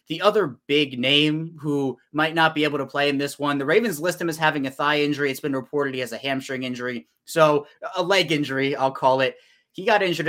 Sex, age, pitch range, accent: male, 20-39, 125-155 Hz, American